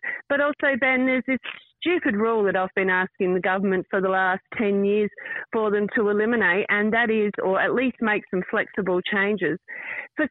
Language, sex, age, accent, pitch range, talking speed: English, female, 40-59, Australian, 190-255 Hz, 190 wpm